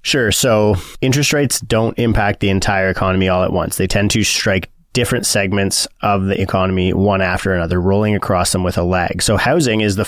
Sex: male